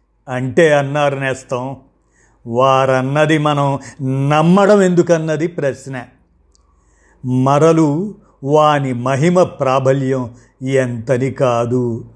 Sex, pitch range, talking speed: male, 130-160 Hz, 70 wpm